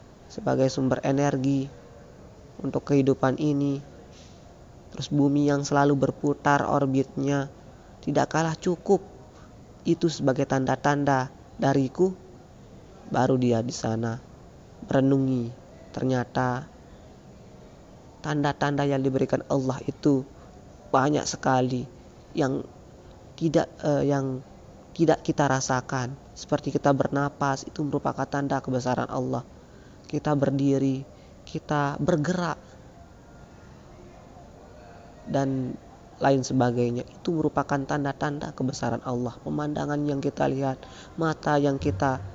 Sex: female